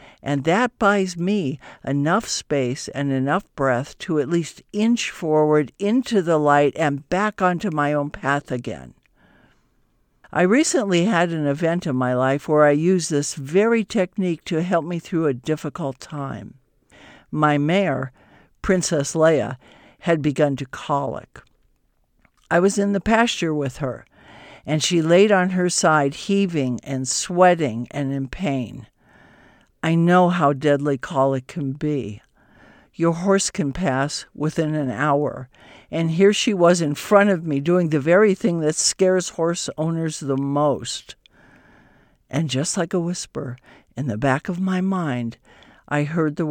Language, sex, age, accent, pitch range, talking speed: English, male, 60-79, American, 140-185 Hz, 150 wpm